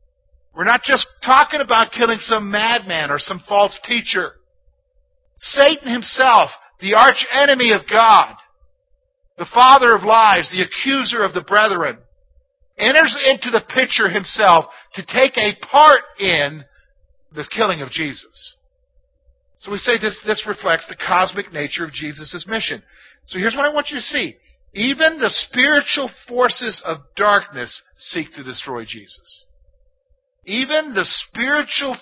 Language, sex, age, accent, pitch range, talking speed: English, male, 50-69, American, 175-270 Hz, 140 wpm